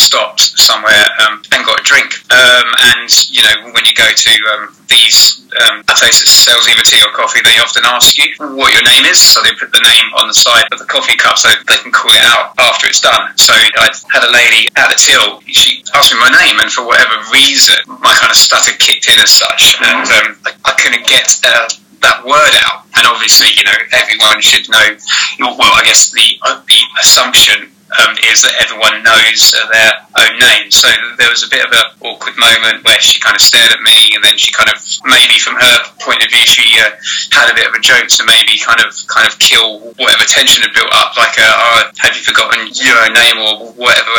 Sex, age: male, 20-39